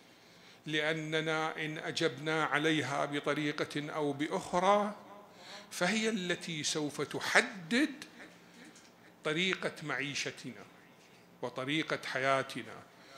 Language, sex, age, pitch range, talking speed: Arabic, male, 50-69, 145-195 Hz, 70 wpm